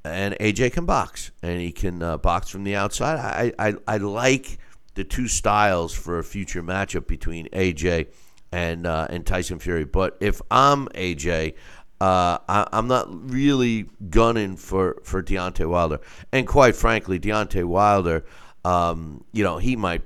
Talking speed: 160 wpm